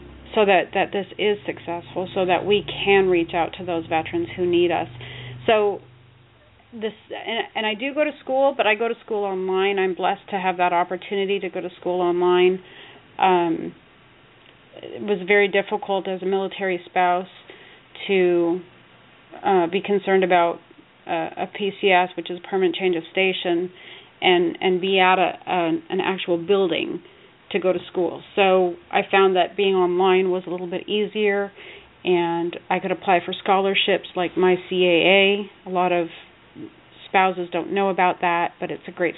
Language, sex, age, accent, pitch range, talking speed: English, female, 30-49, American, 175-200 Hz, 170 wpm